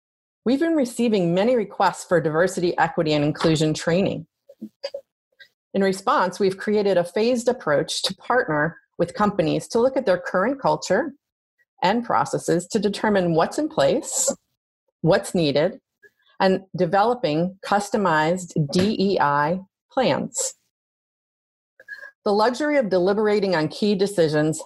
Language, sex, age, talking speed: English, female, 40-59, 120 wpm